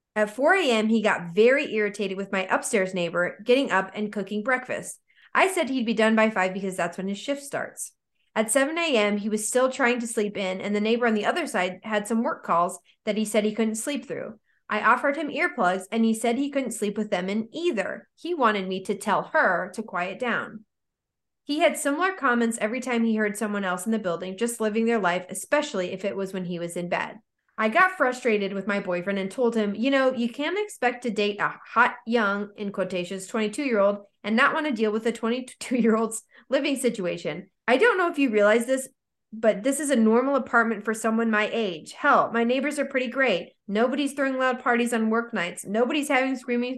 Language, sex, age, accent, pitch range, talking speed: English, female, 20-39, American, 205-260 Hz, 220 wpm